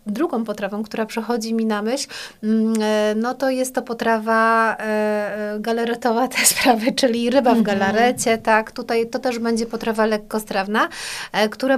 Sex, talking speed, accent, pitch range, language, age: female, 140 wpm, native, 210-240 Hz, Polish, 30-49